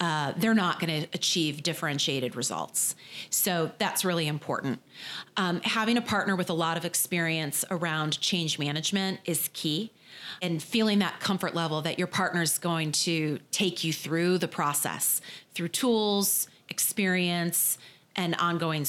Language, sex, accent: English, female, American